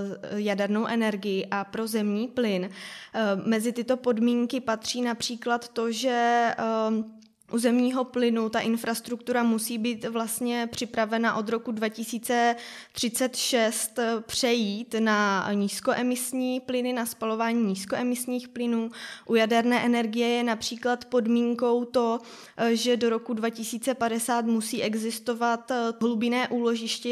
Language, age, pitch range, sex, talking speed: Czech, 20-39, 225-250 Hz, female, 105 wpm